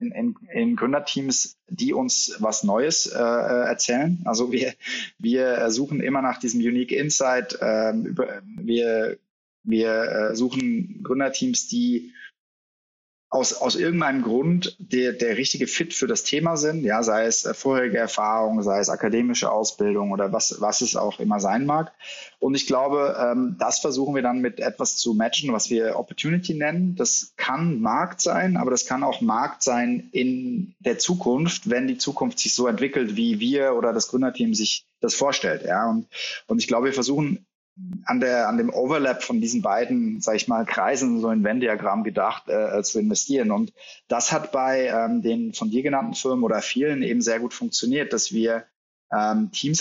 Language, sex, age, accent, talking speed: German, male, 20-39, German, 175 wpm